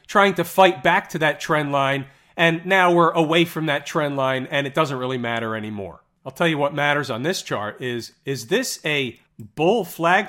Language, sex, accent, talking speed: English, male, American, 210 wpm